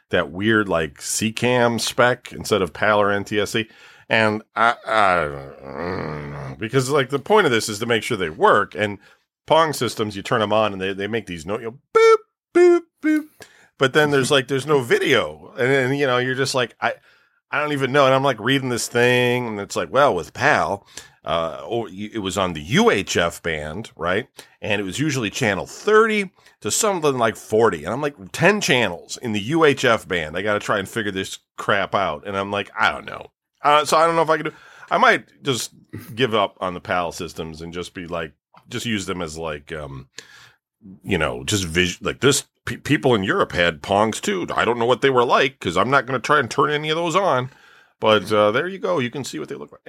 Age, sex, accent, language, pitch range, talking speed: 40-59, male, American, English, 100-140 Hz, 235 wpm